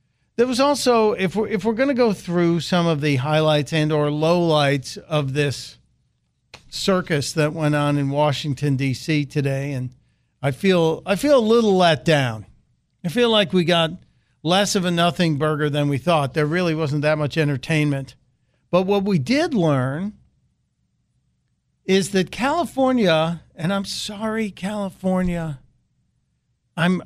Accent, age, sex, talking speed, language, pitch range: American, 50-69, male, 155 wpm, English, 150-200 Hz